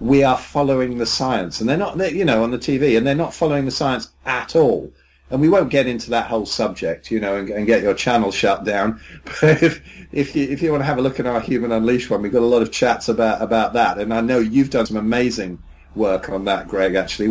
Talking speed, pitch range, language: 265 wpm, 115-145 Hz, English